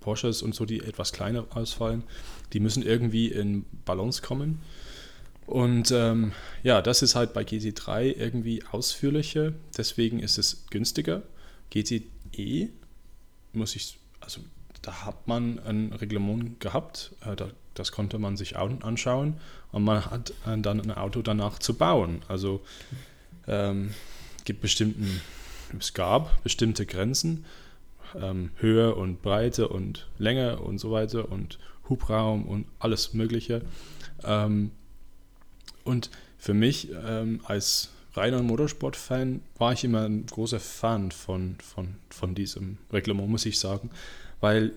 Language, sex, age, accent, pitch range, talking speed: German, male, 20-39, German, 95-115 Hz, 135 wpm